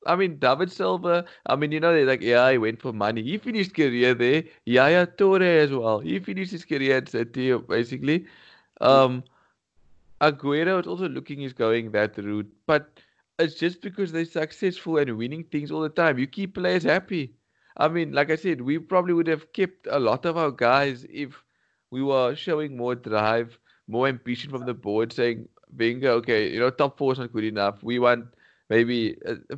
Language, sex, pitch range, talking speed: English, male, 110-150 Hz, 195 wpm